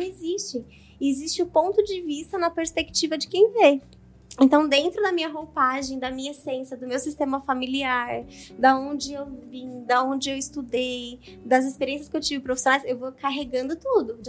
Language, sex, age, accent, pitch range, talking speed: Portuguese, female, 20-39, Brazilian, 265-340 Hz, 175 wpm